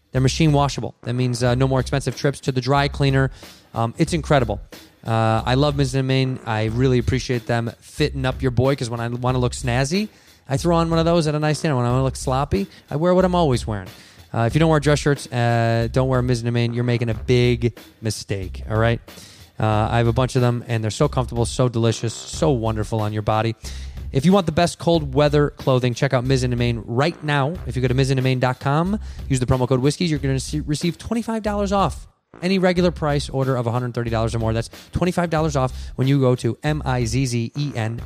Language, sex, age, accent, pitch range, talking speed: English, male, 20-39, American, 115-145 Hz, 245 wpm